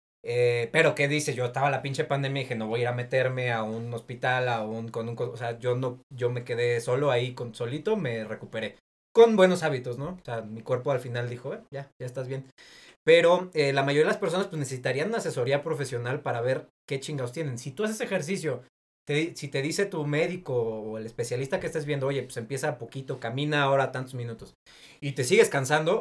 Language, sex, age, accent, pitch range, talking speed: Spanish, male, 30-49, Mexican, 125-160 Hz, 225 wpm